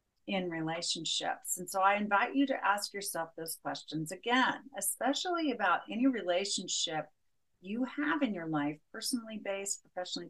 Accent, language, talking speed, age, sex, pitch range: American, English, 145 wpm, 40-59, female, 160-215 Hz